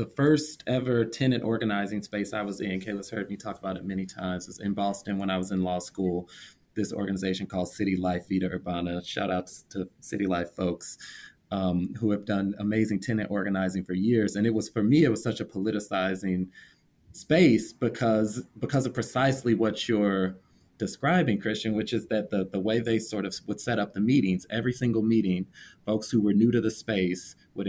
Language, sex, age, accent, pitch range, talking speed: English, male, 30-49, American, 95-115 Hz, 200 wpm